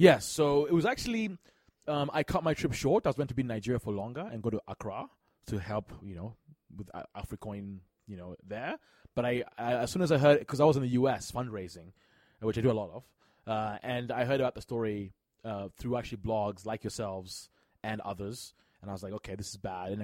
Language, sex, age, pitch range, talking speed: English, male, 20-39, 105-130 Hz, 235 wpm